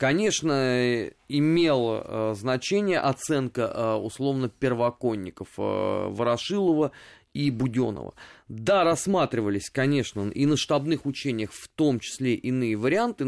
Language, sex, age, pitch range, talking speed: Russian, male, 20-39, 120-170 Hz, 110 wpm